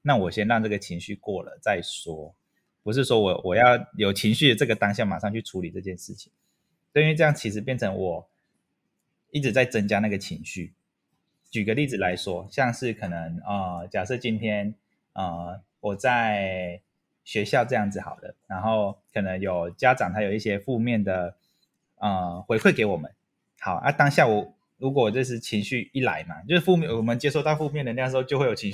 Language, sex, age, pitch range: Chinese, male, 20-39, 100-130 Hz